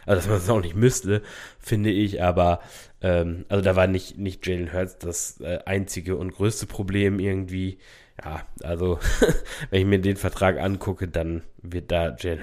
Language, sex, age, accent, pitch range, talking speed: German, male, 20-39, German, 90-100 Hz, 180 wpm